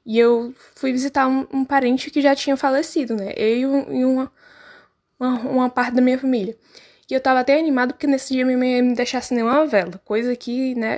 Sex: female